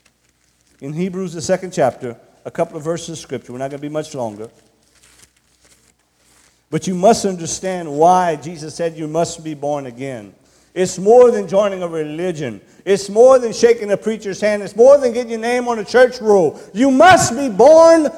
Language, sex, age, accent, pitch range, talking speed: English, male, 50-69, American, 185-240 Hz, 190 wpm